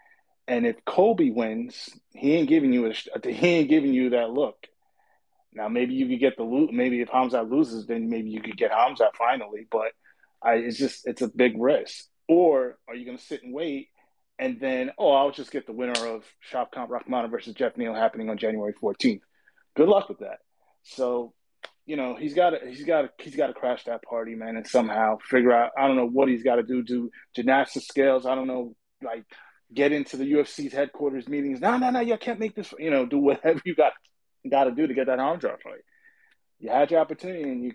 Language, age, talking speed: English, 20-39, 220 wpm